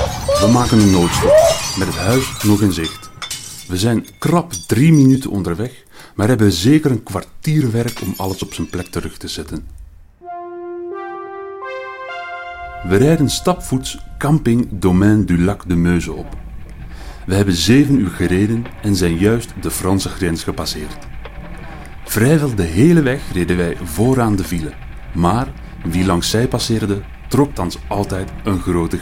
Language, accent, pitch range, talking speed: Dutch, Dutch, 85-125 Hz, 145 wpm